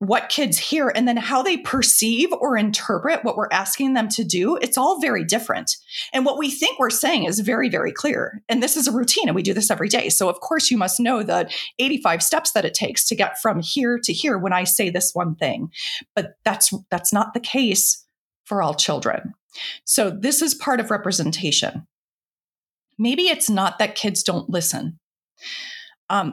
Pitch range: 180-255 Hz